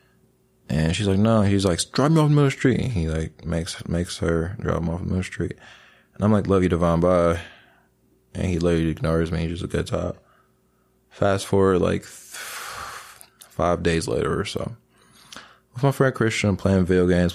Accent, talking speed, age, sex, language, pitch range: American, 200 wpm, 20-39, male, English, 80-100 Hz